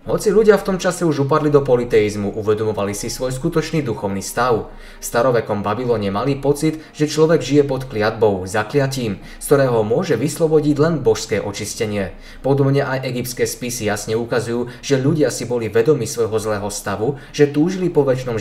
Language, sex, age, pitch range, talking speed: Slovak, male, 20-39, 110-150 Hz, 165 wpm